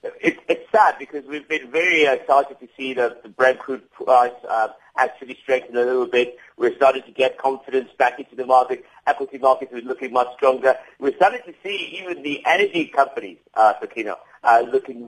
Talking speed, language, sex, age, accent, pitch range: 205 wpm, English, male, 50-69, British, 125-185 Hz